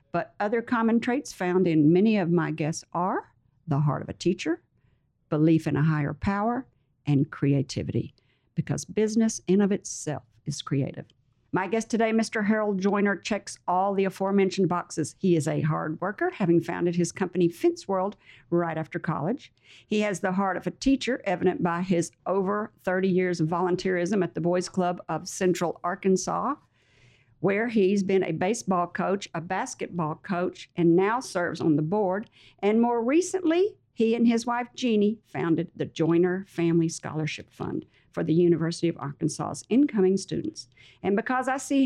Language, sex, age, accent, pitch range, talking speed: English, female, 50-69, American, 165-210 Hz, 170 wpm